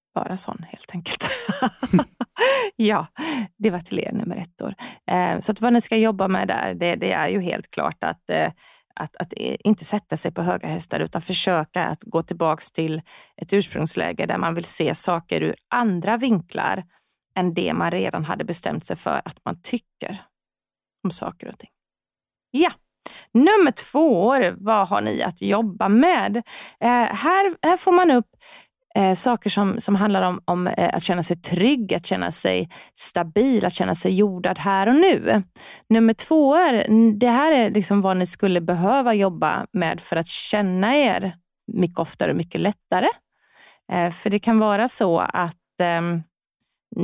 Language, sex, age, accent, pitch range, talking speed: Swedish, female, 30-49, native, 180-235 Hz, 175 wpm